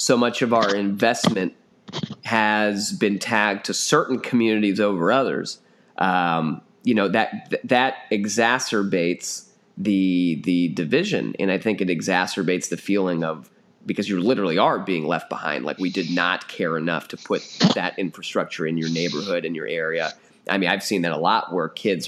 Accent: American